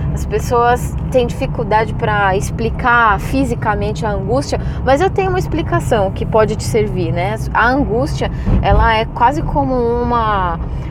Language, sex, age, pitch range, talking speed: Portuguese, female, 20-39, 185-240 Hz, 145 wpm